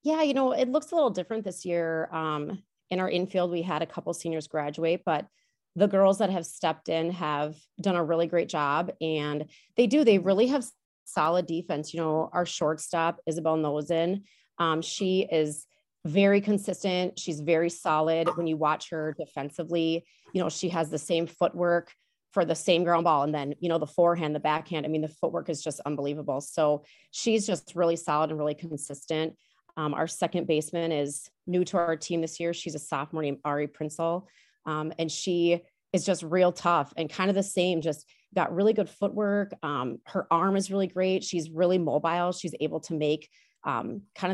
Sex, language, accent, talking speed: female, English, American, 195 wpm